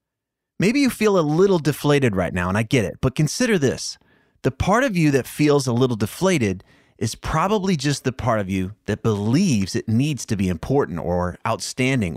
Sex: male